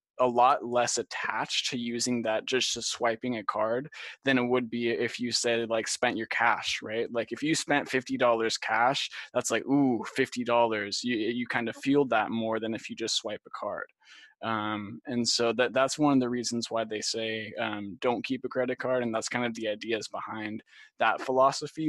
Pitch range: 115-130 Hz